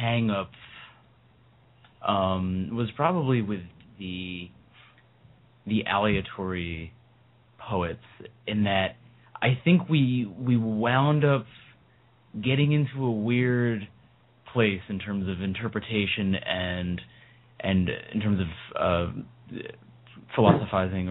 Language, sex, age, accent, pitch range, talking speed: English, male, 30-49, American, 95-120 Hz, 95 wpm